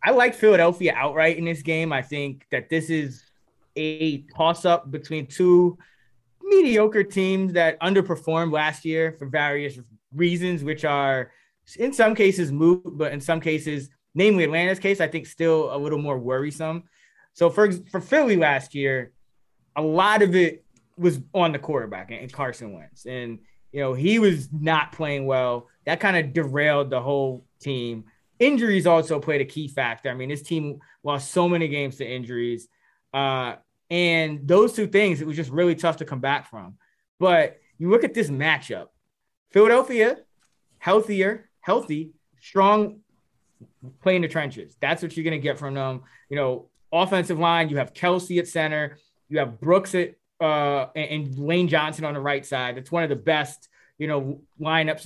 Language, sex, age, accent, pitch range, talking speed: English, male, 20-39, American, 140-175 Hz, 175 wpm